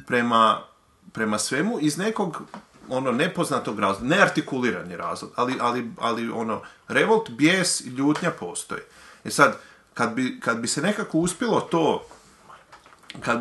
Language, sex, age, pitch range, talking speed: Croatian, male, 30-49, 105-140 Hz, 125 wpm